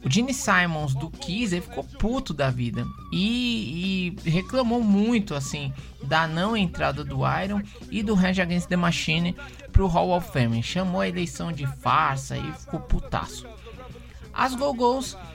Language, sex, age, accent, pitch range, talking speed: Portuguese, male, 20-39, Brazilian, 130-195 Hz, 155 wpm